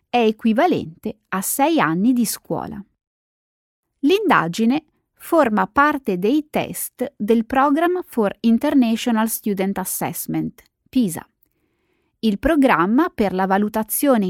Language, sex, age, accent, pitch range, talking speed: Italian, female, 30-49, native, 195-275 Hz, 100 wpm